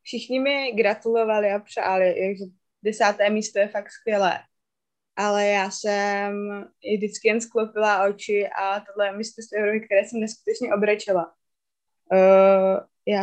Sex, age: female, 20-39